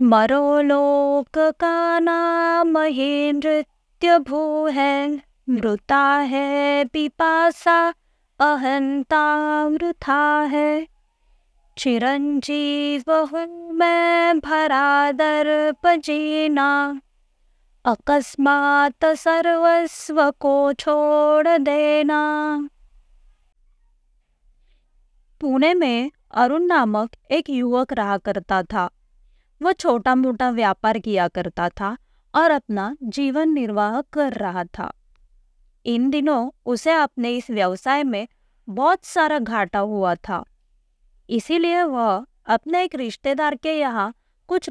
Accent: native